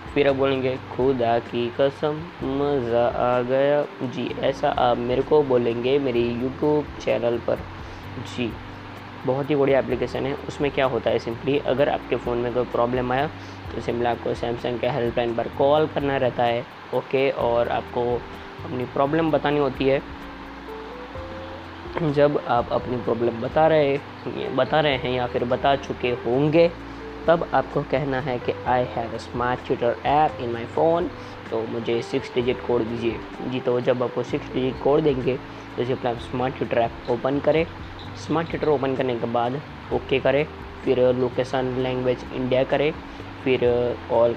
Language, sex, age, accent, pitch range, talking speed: Hindi, female, 20-39, native, 120-140 Hz, 165 wpm